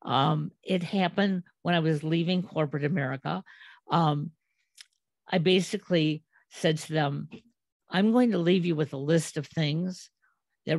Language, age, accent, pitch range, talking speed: English, 50-69, American, 155-185 Hz, 145 wpm